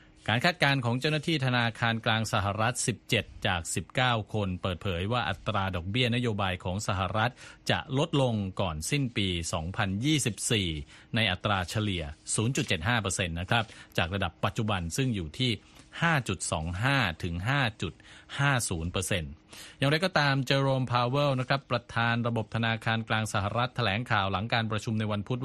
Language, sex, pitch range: Thai, male, 95-125 Hz